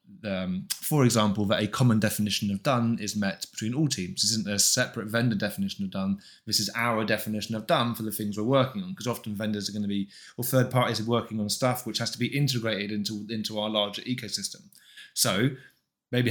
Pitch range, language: 110-125 Hz, English